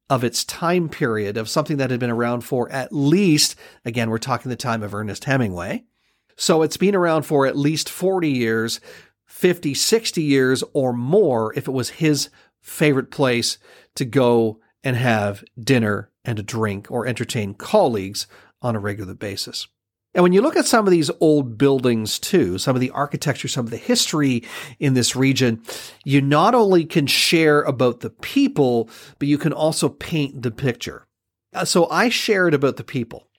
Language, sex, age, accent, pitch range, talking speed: English, male, 40-59, American, 120-155 Hz, 180 wpm